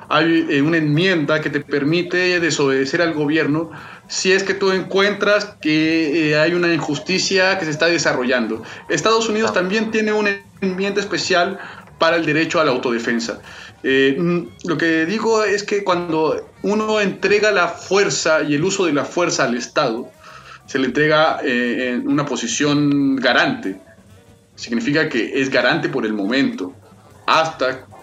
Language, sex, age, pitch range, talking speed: Spanish, male, 30-49, 140-190 Hz, 150 wpm